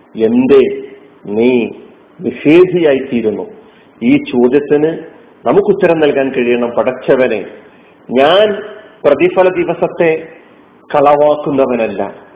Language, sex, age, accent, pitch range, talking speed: Malayalam, male, 40-59, native, 130-175 Hz, 70 wpm